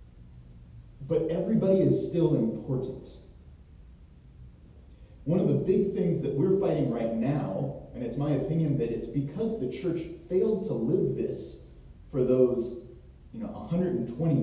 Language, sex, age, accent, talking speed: English, male, 30-49, American, 130 wpm